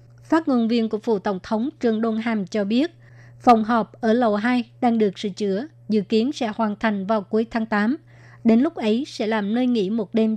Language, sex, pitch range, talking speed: Vietnamese, male, 210-240 Hz, 225 wpm